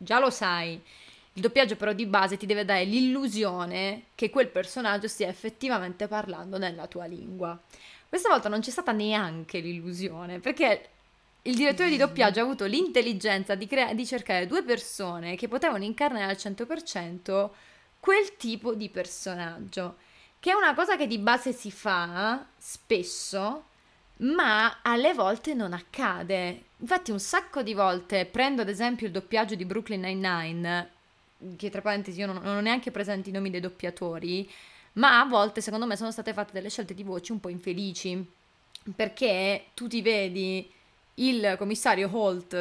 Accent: native